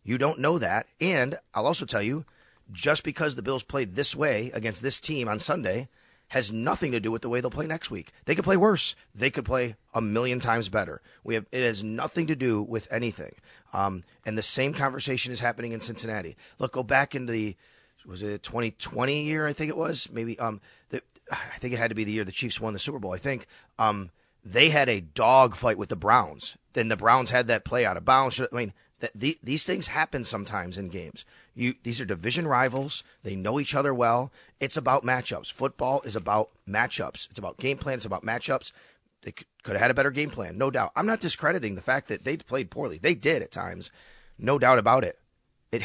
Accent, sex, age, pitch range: American, male, 30-49, 110-140 Hz